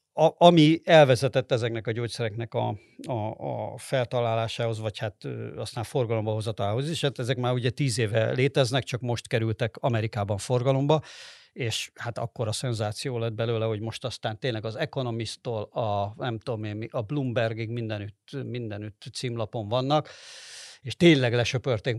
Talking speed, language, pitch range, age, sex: 140 wpm, Hungarian, 115-145 Hz, 50-69, male